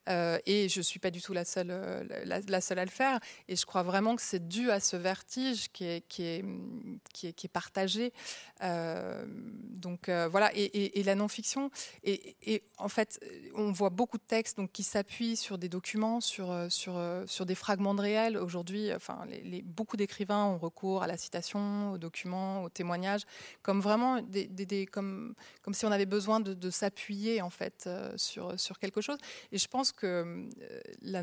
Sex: female